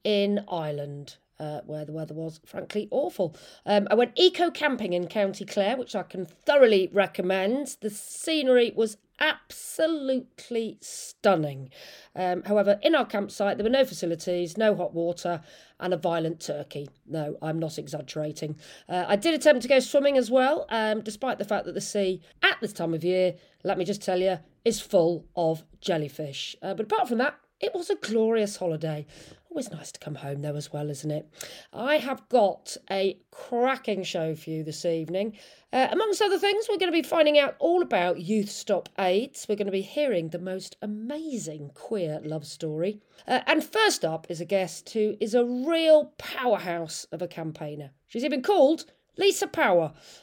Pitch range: 165-255 Hz